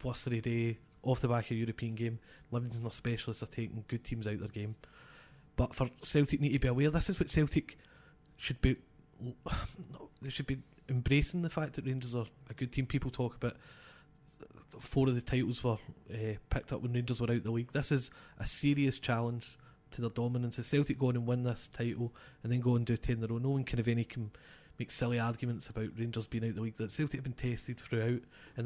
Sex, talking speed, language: male, 240 wpm, English